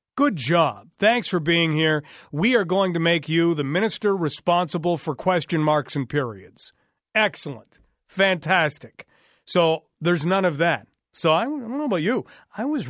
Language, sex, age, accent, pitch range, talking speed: English, male, 40-59, American, 150-180 Hz, 165 wpm